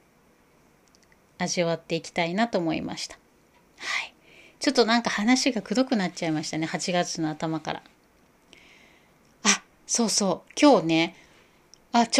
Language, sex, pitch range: Japanese, female, 170-230 Hz